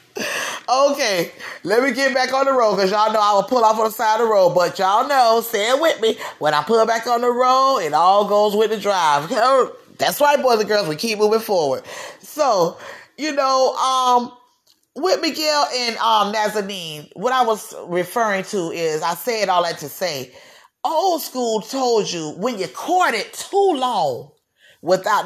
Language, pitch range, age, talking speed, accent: English, 200-305 Hz, 30-49, 190 wpm, American